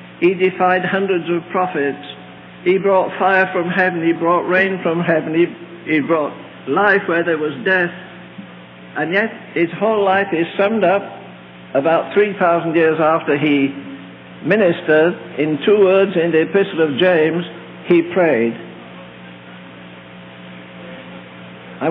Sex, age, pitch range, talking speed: male, 60-79, 120-185 Hz, 130 wpm